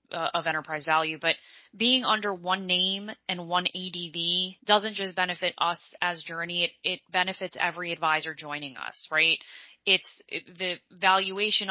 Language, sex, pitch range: English, female, 165-205 Hz